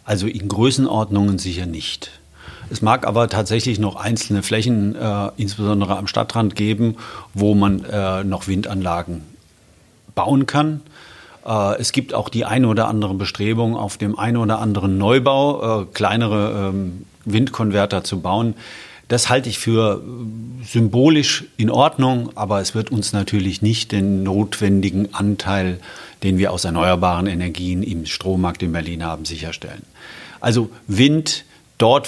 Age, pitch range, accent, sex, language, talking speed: 40-59, 95-115 Hz, German, male, German, 140 wpm